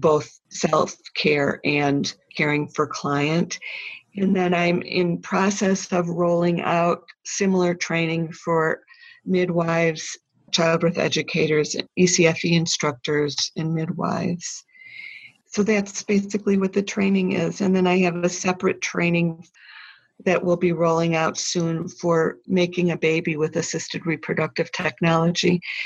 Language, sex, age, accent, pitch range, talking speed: English, female, 50-69, American, 165-190 Hz, 125 wpm